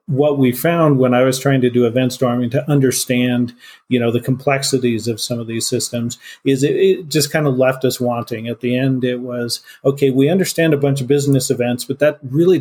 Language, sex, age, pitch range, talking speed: English, male, 40-59, 120-140 Hz, 225 wpm